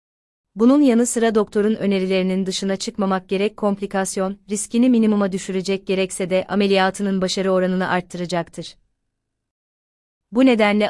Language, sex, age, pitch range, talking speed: Turkish, female, 30-49, 175-210 Hz, 110 wpm